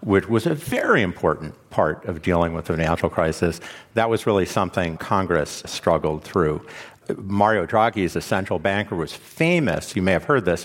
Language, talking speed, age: English, 175 wpm, 50-69